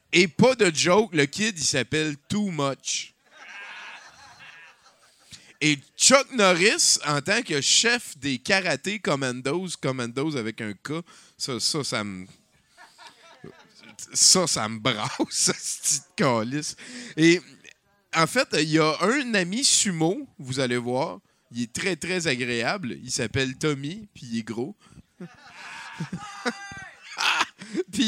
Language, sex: French, male